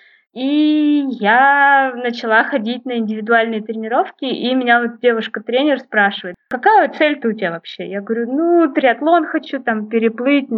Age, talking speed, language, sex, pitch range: 20-39, 135 wpm, Russian, female, 210-275 Hz